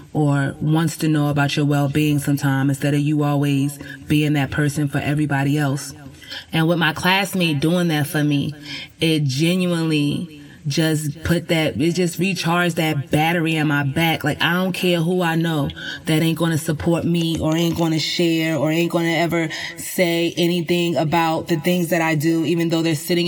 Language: English